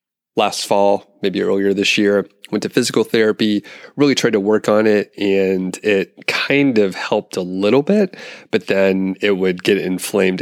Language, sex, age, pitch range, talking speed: English, male, 30-49, 95-105 Hz, 175 wpm